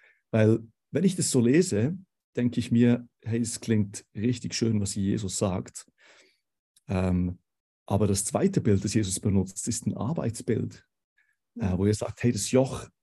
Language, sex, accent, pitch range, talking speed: German, male, German, 100-125 Hz, 160 wpm